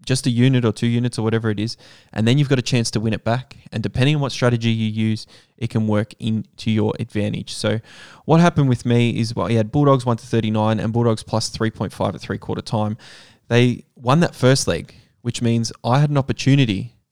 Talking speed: 215 wpm